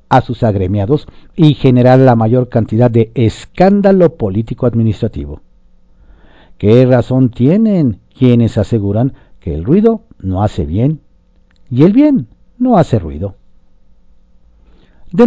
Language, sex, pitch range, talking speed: Spanish, male, 100-150 Hz, 115 wpm